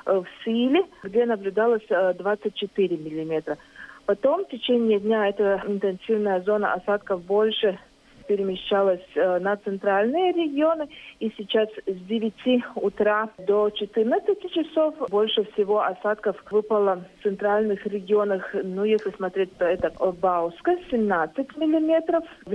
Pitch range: 190-225 Hz